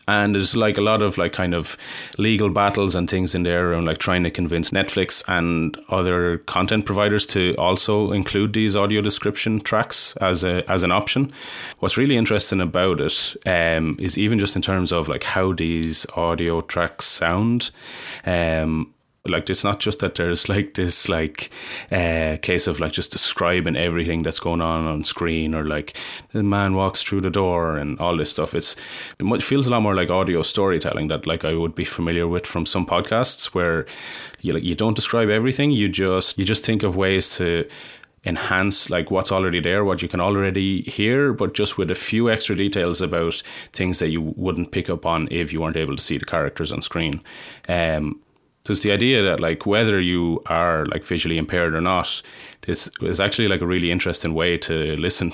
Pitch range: 85-100 Hz